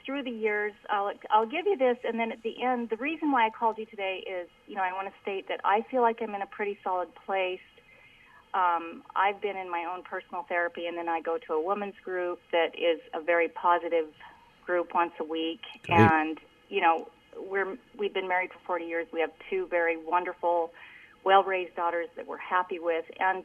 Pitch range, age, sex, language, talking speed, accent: 175-240 Hz, 40-59, female, English, 215 wpm, American